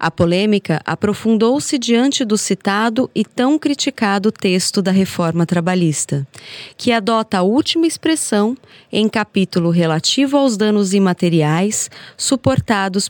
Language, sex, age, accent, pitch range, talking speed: Portuguese, female, 30-49, Brazilian, 185-255 Hz, 115 wpm